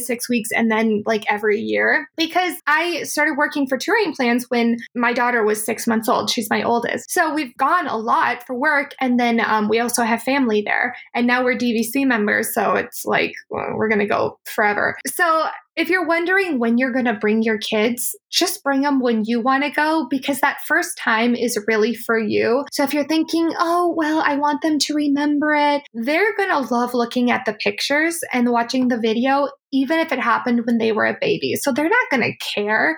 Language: English